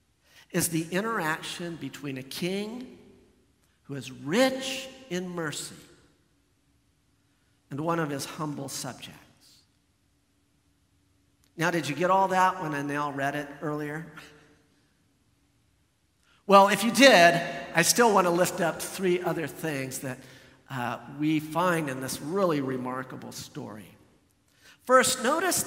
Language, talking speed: English, 125 wpm